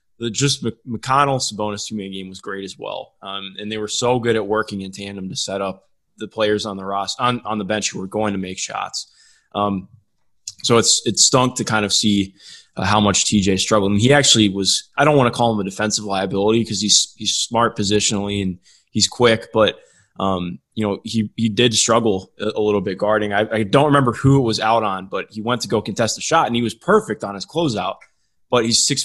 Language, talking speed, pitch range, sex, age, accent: English, 235 wpm, 100-120 Hz, male, 20-39, American